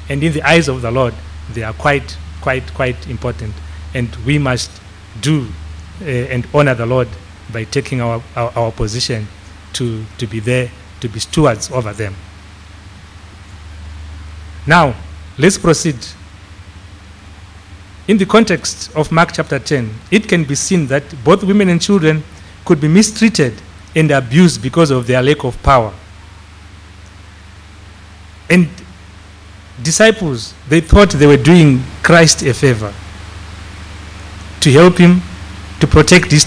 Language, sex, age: English, male, 40-59